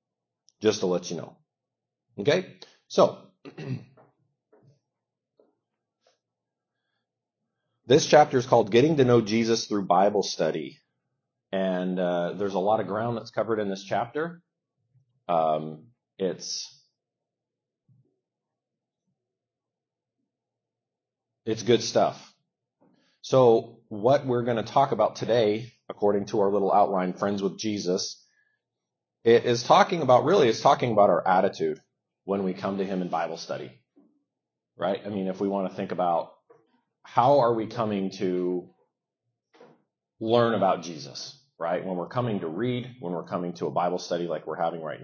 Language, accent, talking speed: English, American, 135 wpm